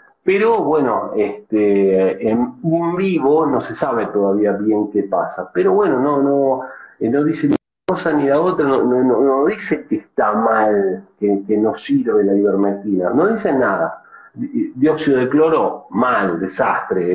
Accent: Argentinian